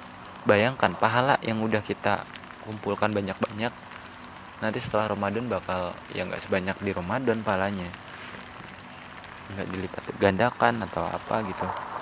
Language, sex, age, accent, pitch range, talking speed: Indonesian, male, 20-39, native, 95-115 Hz, 115 wpm